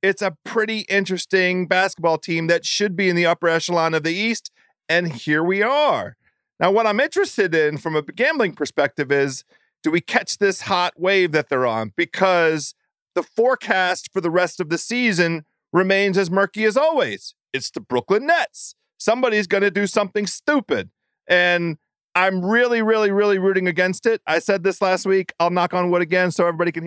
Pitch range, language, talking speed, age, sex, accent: 165-210 Hz, English, 190 wpm, 40-59, male, American